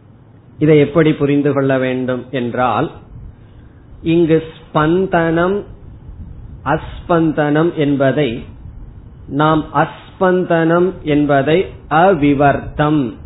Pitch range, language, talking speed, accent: 125-160 Hz, Tamil, 65 wpm, native